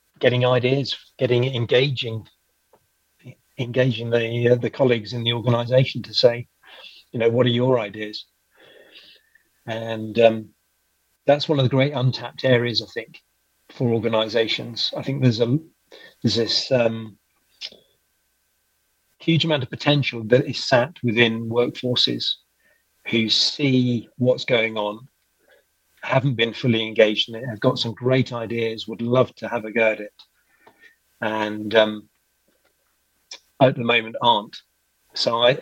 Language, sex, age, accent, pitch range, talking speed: English, male, 40-59, British, 110-125 Hz, 135 wpm